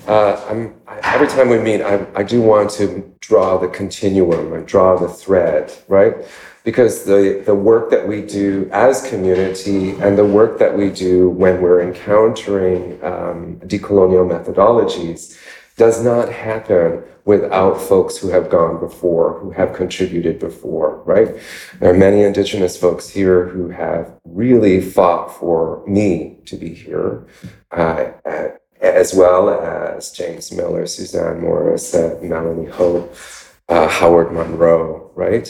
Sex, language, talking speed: male, English, 140 wpm